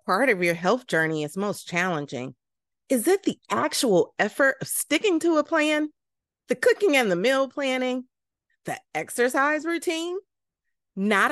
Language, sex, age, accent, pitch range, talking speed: English, female, 30-49, American, 205-325 Hz, 150 wpm